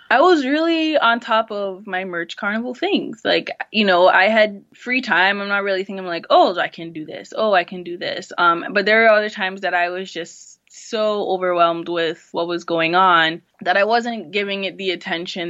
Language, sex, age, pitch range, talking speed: English, female, 20-39, 175-215 Hz, 215 wpm